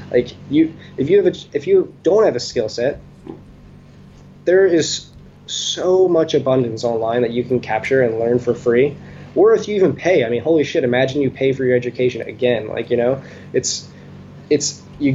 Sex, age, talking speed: male, 20-39, 195 wpm